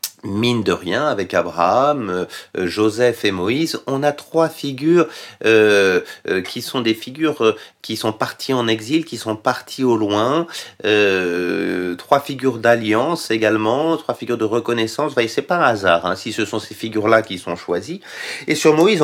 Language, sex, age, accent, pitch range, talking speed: French, male, 40-59, French, 105-145 Hz, 180 wpm